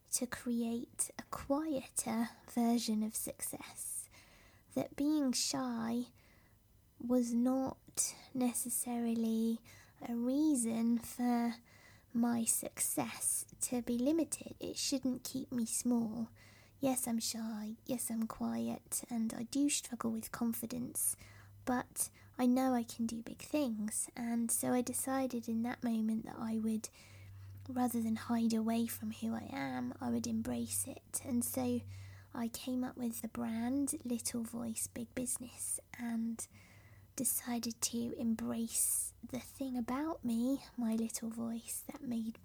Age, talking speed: 20-39, 130 wpm